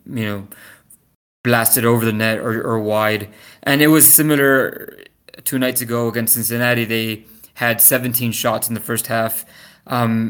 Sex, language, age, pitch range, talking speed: male, English, 20-39, 115-130 Hz, 155 wpm